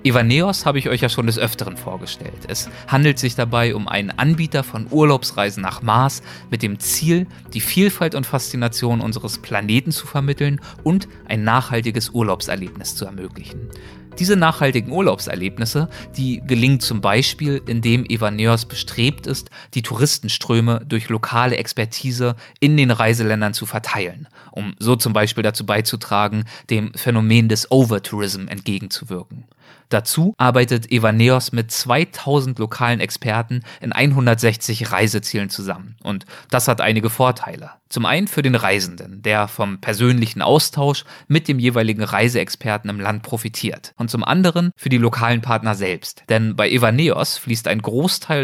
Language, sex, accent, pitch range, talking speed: German, male, German, 110-130 Hz, 140 wpm